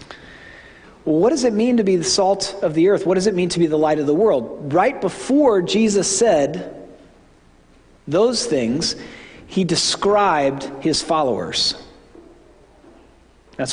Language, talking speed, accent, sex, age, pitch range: English, 145 wpm, American, male, 40-59, 145-185 Hz